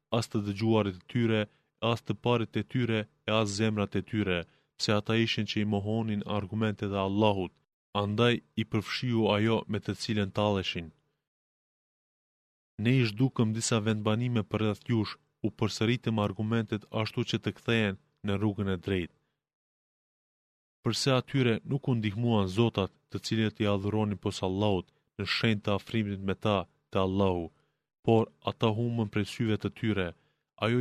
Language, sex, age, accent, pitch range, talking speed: Greek, male, 20-39, Turkish, 100-115 Hz, 120 wpm